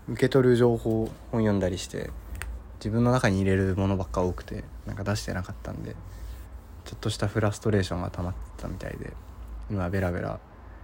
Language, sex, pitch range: Japanese, male, 80-100 Hz